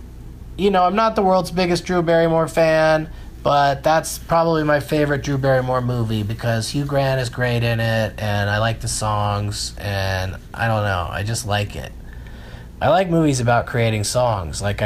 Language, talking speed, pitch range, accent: English, 180 wpm, 110-165 Hz, American